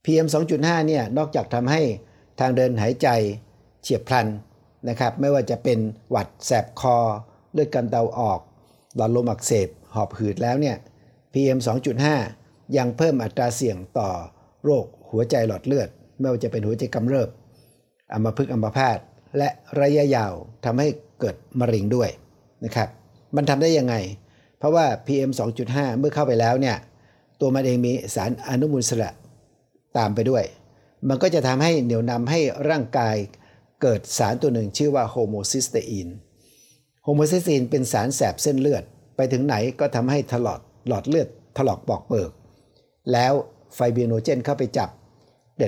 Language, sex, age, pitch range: Thai, male, 60-79, 115-140 Hz